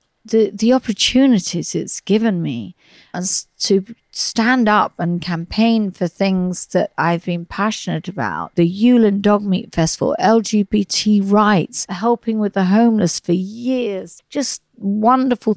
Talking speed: 130 wpm